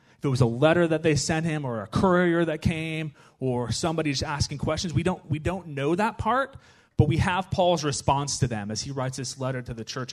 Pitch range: 115-150 Hz